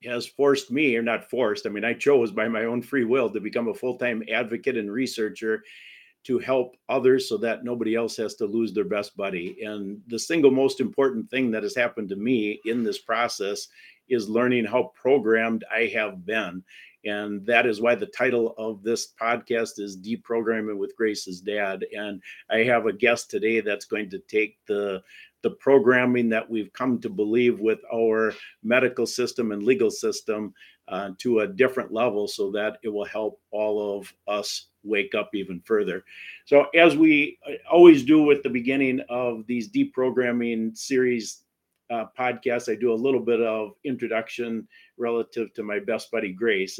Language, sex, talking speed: English, male, 180 wpm